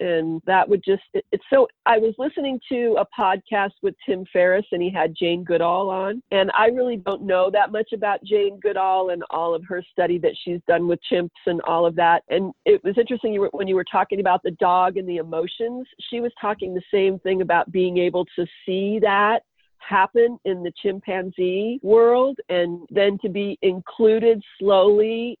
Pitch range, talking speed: 185-230 Hz, 195 wpm